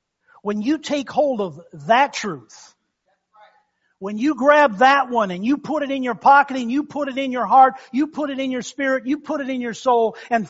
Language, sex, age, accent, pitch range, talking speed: English, male, 50-69, American, 195-280 Hz, 225 wpm